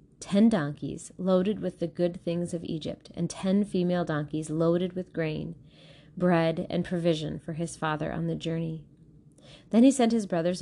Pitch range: 160-200 Hz